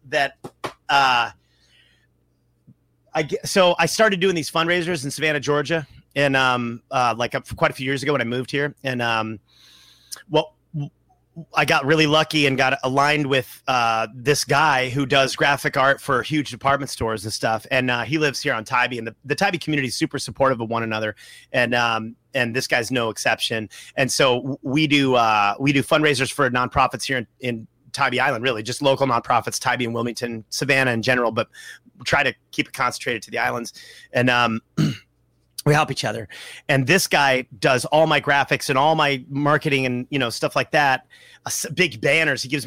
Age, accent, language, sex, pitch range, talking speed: 30-49, American, English, male, 120-150 Hz, 195 wpm